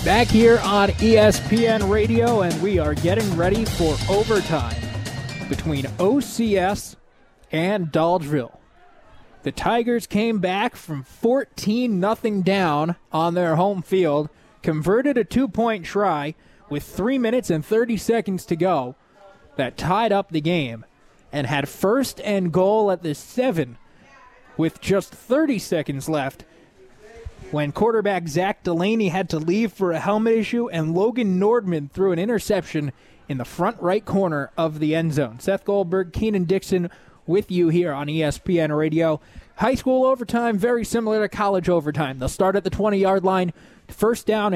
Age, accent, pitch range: 20-39, American, 160-210 Hz